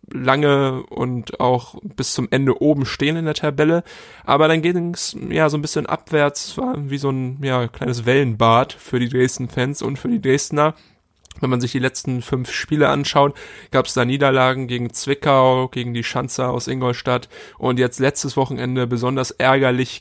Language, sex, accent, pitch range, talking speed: German, male, German, 125-140 Hz, 175 wpm